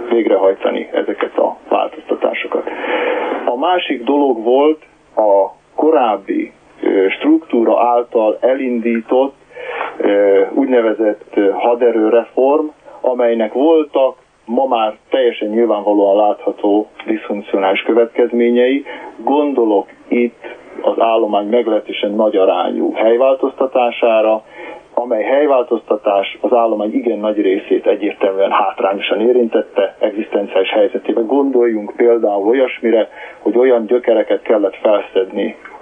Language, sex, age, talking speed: Hungarian, male, 40-59, 85 wpm